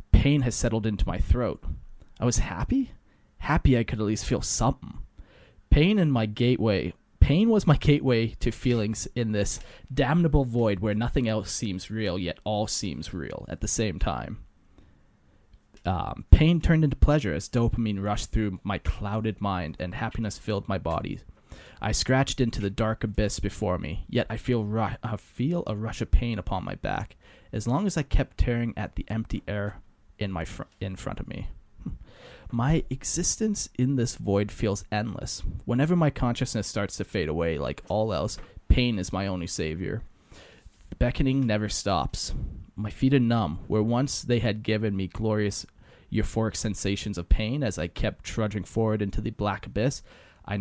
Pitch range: 95-120 Hz